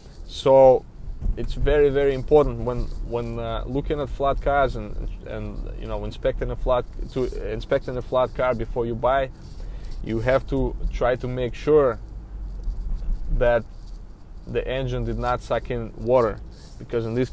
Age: 20-39